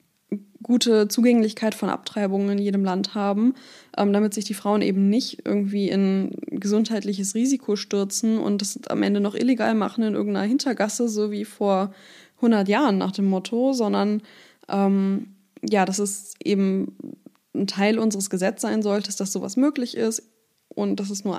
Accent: German